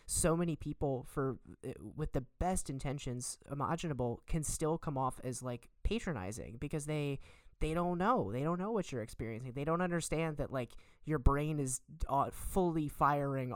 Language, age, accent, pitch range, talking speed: English, 20-39, American, 130-165 Hz, 165 wpm